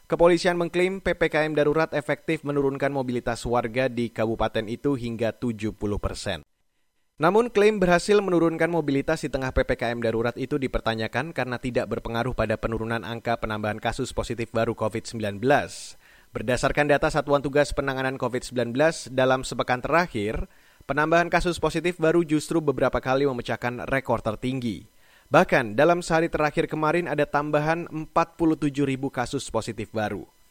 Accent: native